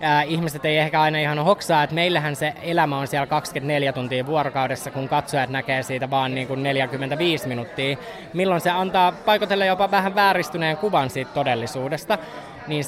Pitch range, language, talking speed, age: 140-190 Hz, Finnish, 160 wpm, 20-39